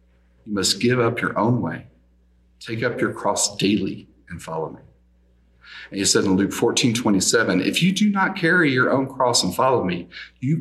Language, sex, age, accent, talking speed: English, male, 40-59, American, 190 wpm